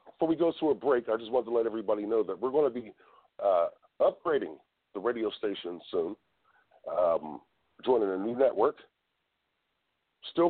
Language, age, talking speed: English, 40-59, 170 wpm